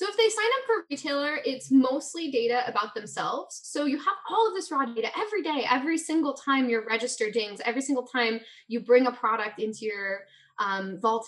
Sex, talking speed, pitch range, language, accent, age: female, 215 wpm, 210-270 Hz, English, American, 10-29